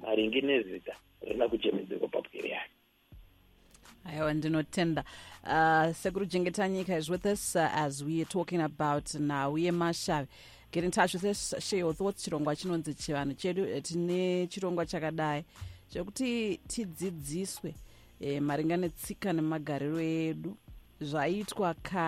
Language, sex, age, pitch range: English, female, 40-59, 150-185 Hz